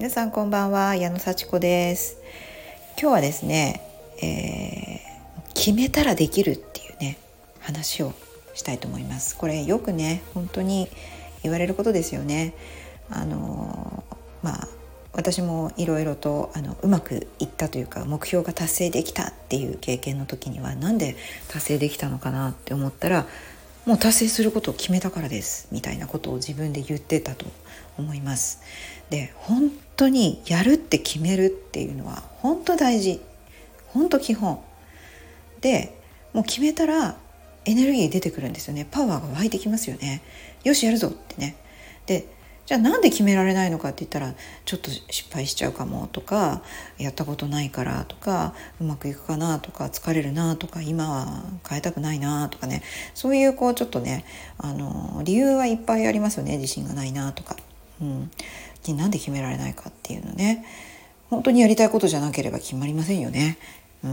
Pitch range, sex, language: 135-200 Hz, female, Japanese